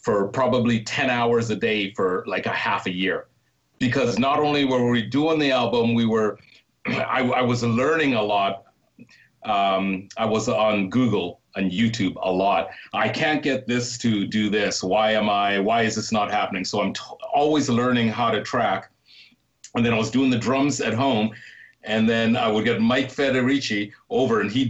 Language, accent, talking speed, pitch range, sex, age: English, American, 190 wpm, 110-135 Hz, male, 40-59